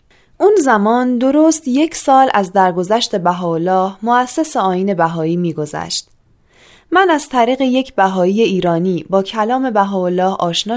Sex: female